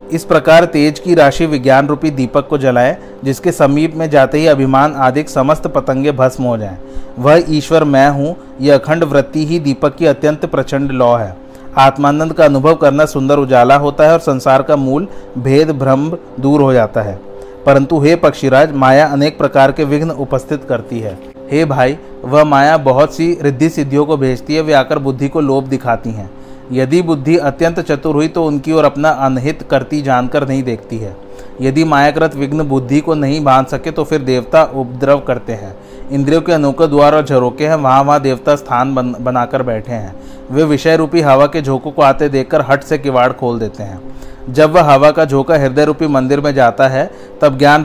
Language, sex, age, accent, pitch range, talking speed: Hindi, male, 40-59, native, 130-155 Hz, 190 wpm